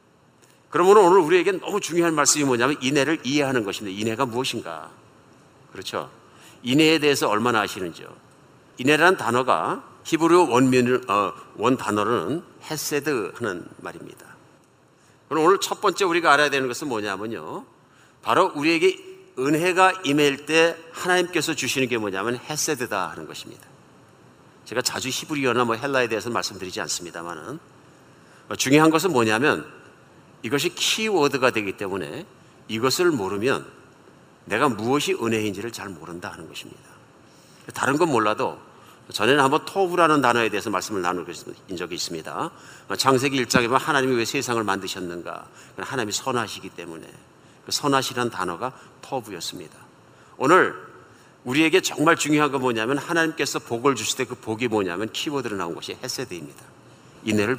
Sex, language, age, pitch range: male, Korean, 50-69, 115-155 Hz